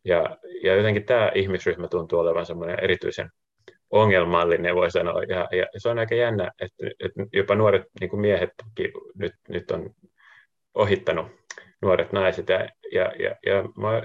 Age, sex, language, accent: 30-49, male, Finnish, native